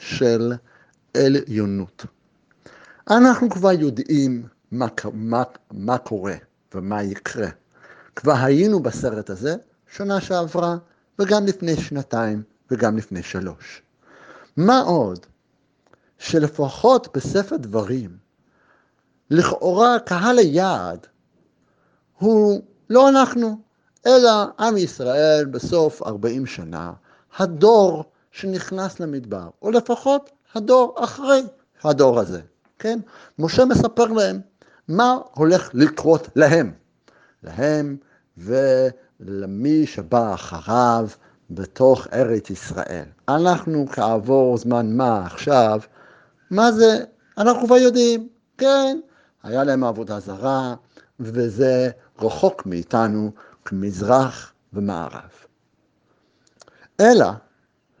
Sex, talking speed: male, 90 wpm